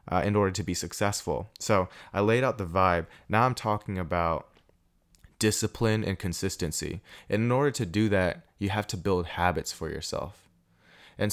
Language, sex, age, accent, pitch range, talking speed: English, male, 20-39, American, 90-105 Hz, 175 wpm